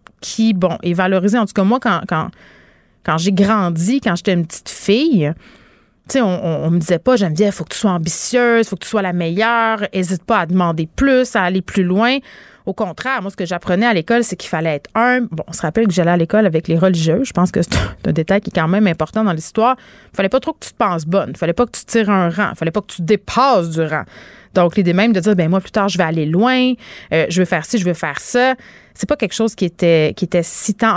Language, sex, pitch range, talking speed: French, female, 170-225 Hz, 275 wpm